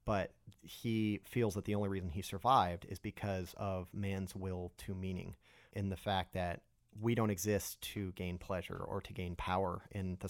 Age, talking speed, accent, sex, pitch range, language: 30-49, 185 wpm, American, male, 95-115 Hz, English